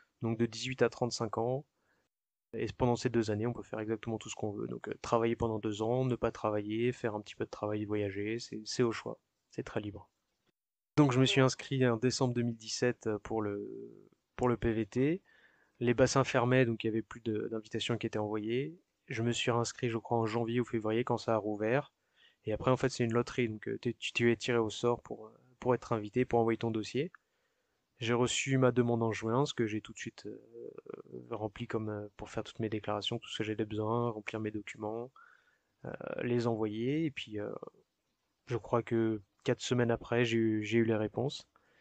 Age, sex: 20-39, male